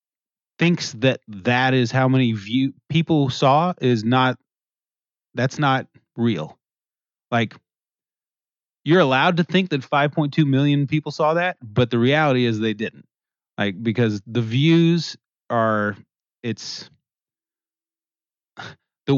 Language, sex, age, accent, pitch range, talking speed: English, male, 30-49, American, 115-155 Hz, 120 wpm